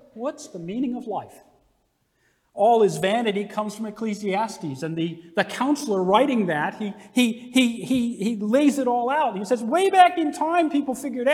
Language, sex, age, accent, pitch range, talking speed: English, male, 40-59, American, 165-250 Hz, 180 wpm